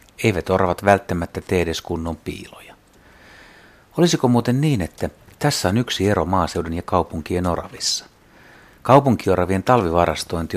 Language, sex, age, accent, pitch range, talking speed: Finnish, male, 60-79, native, 85-105 Hz, 120 wpm